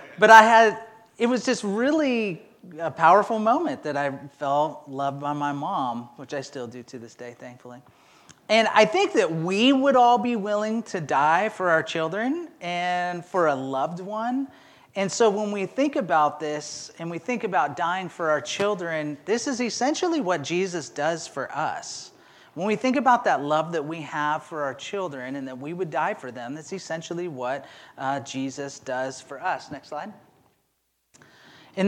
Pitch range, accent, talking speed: 140-210 Hz, American, 185 wpm